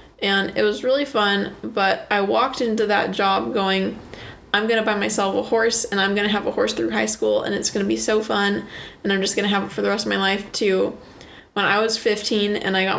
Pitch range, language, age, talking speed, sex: 195-220 Hz, English, 10-29, 265 wpm, female